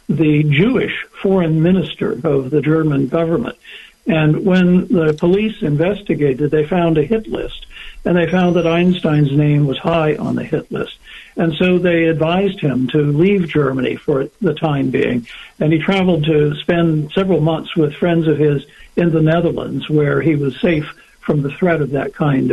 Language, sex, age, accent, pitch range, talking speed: English, male, 60-79, American, 150-180 Hz, 175 wpm